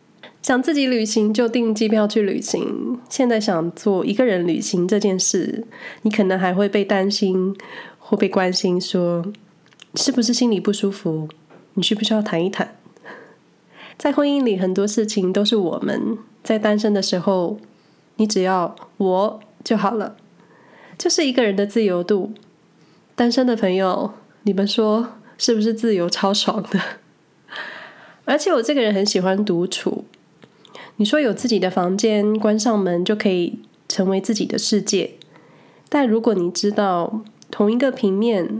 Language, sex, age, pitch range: Chinese, female, 20-39, 190-230 Hz